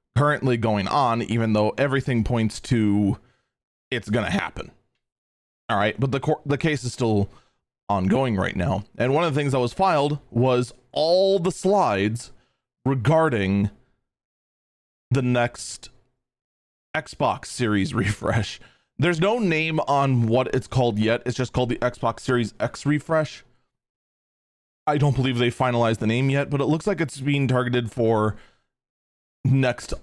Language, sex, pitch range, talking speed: English, male, 110-140 Hz, 150 wpm